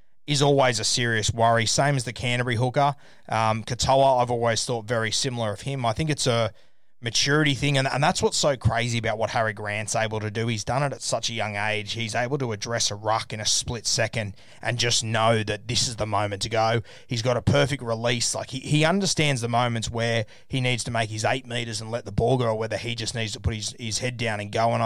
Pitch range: 115-135 Hz